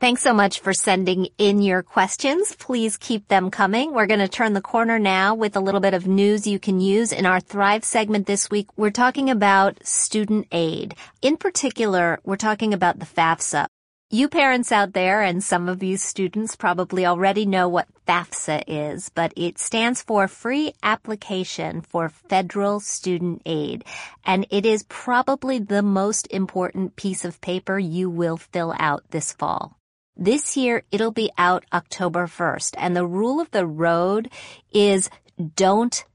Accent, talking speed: American, 170 wpm